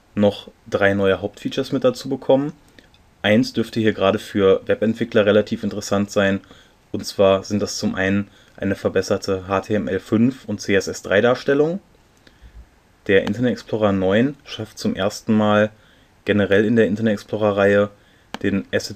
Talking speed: 140 wpm